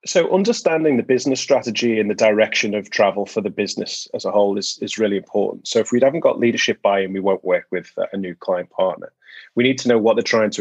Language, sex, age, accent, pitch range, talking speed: English, male, 30-49, British, 100-130 Hz, 245 wpm